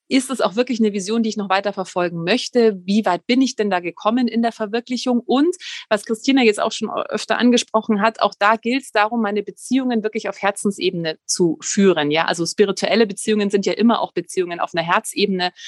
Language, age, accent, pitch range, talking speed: German, 30-49, German, 190-230 Hz, 210 wpm